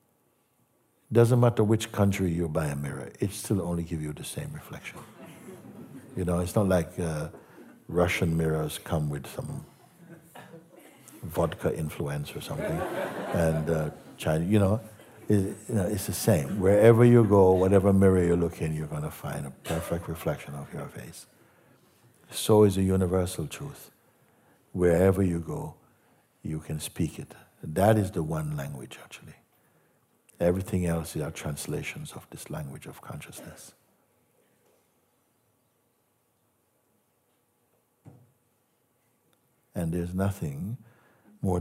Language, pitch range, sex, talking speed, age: English, 80-100 Hz, male, 130 wpm, 60-79